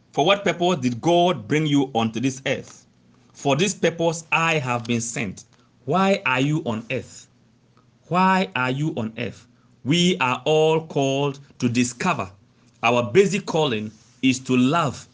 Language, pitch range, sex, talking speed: English, 120-160 Hz, male, 155 wpm